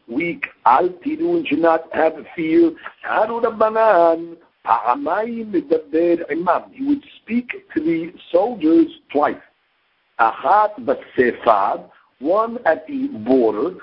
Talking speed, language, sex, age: 90 wpm, English, male, 60-79